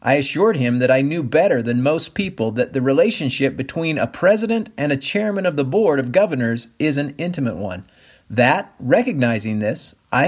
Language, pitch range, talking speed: English, 120-165 Hz, 185 wpm